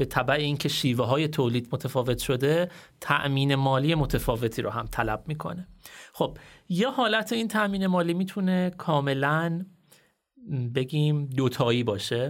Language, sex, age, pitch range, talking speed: Persian, male, 30-49, 125-165 Hz, 130 wpm